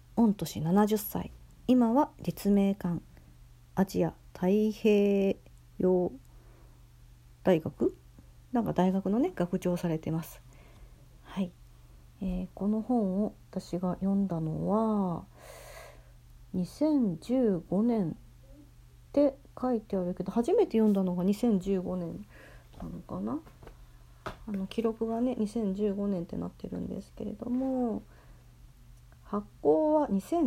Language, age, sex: Japanese, 40-59, female